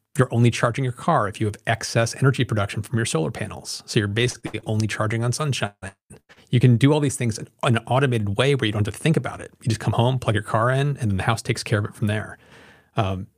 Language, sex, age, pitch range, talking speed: English, male, 30-49, 105-125 Hz, 265 wpm